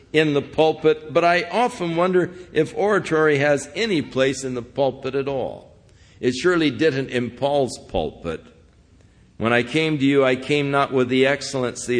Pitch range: 95-135 Hz